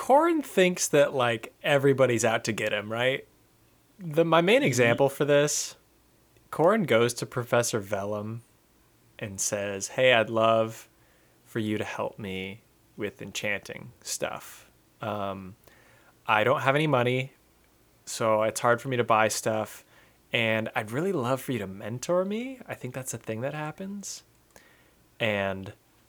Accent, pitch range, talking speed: American, 105-135 Hz, 150 wpm